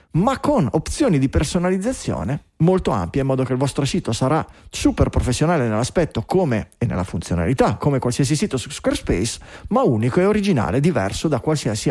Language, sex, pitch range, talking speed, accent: Italian, male, 130-185 Hz, 165 wpm, native